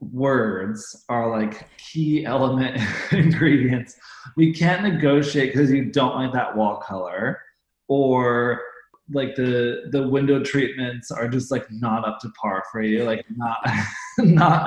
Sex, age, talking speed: male, 20-39, 140 wpm